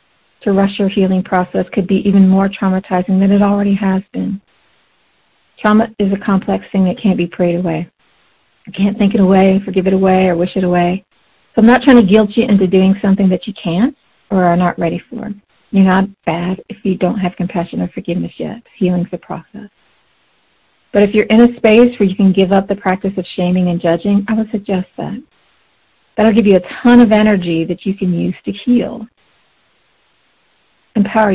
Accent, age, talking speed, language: American, 50-69, 200 wpm, English